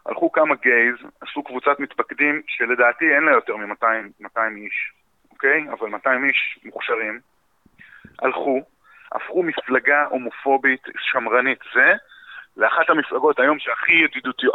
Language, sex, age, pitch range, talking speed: Hebrew, male, 30-49, 125-175 Hz, 115 wpm